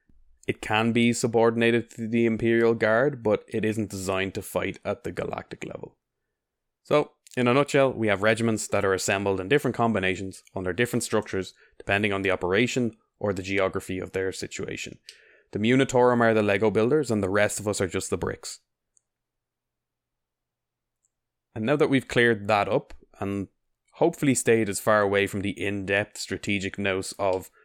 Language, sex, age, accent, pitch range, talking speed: English, male, 20-39, Irish, 100-120 Hz, 170 wpm